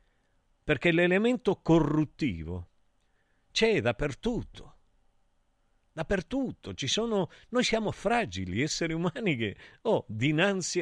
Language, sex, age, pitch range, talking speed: Italian, male, 50-69, 100-155 Hz, 90 wpm